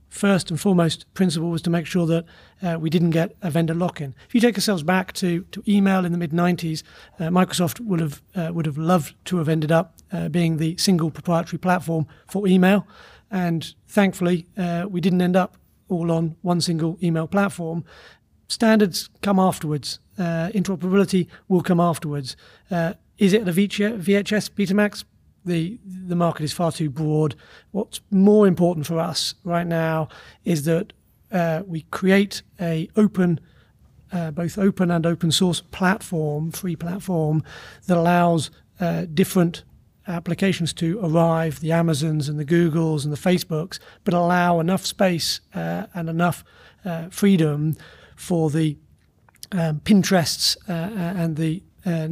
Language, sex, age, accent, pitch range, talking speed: English, male, 30-49, British, 165-185 Hz, 160 wpm